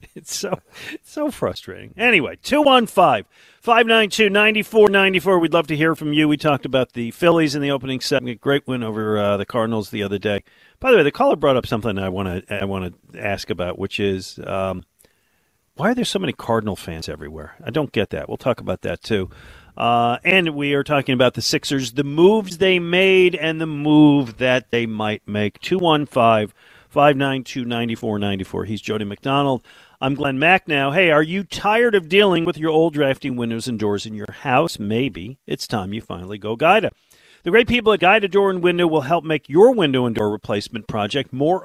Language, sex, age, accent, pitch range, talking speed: English, male, 50-69, American, 110-165 Hz, 195 wpm